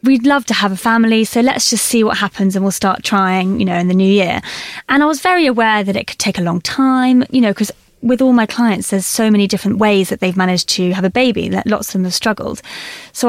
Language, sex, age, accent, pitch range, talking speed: English, female, 20-39, British, 190-235 Hz, 270 wpm